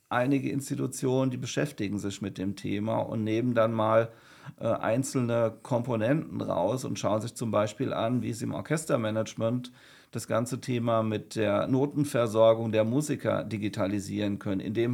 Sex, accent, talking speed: male, German, 150 wpm